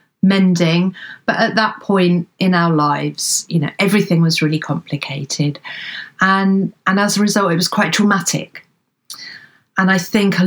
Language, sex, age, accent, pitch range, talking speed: English, female, 40-59, British, 160-190 Hz, 155 wpm